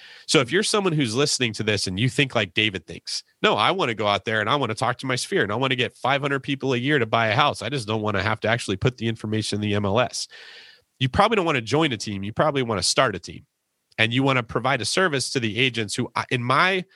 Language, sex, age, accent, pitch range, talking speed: English, male, 30-49, American, 100-135 Hz, 295 wpm